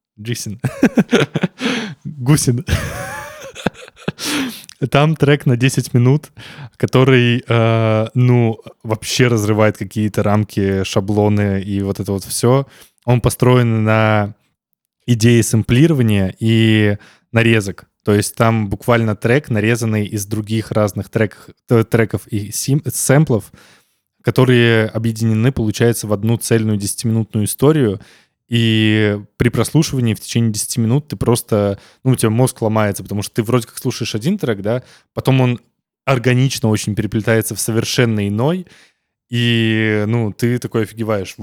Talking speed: 125 wpm